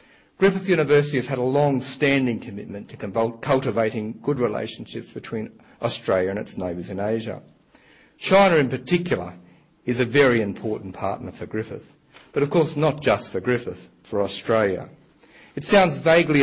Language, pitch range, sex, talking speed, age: English, 105-145 Hz, male, 145 wpm, 50-69